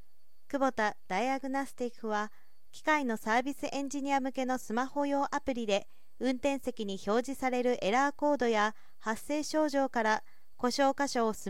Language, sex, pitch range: Japanese, female, 220-275 Hz